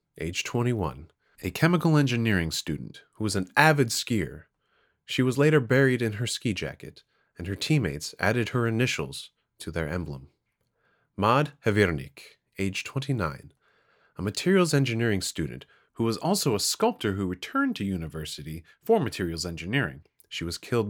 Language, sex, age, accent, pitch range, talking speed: English, male, 30-49, American, 85-120 Hz, 145 wpm